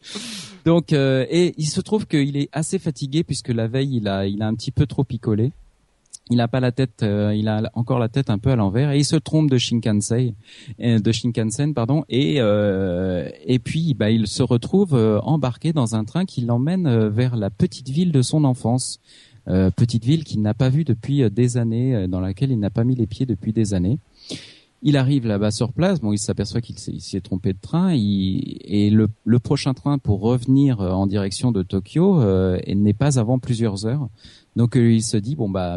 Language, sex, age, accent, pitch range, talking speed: French, male, 40-59, French, 100-135 Hz, 215 wpm